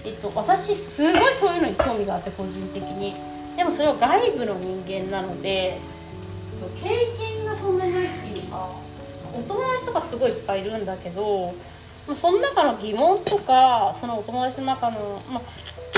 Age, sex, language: 20-39, female, Japanese